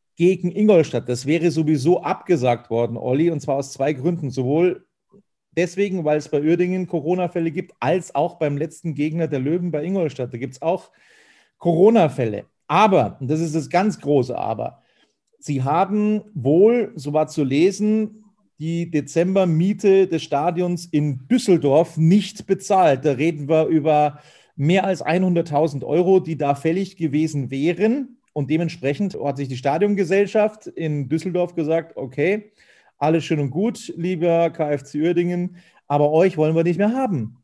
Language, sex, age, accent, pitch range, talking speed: German, male, 40-59, German, 145-185 Hz, 150 wpm